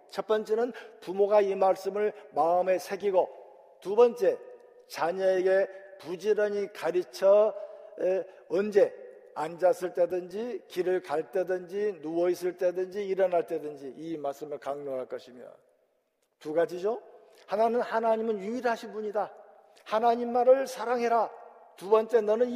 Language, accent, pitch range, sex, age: Korean, native, 180-230 Hz, male, 50-69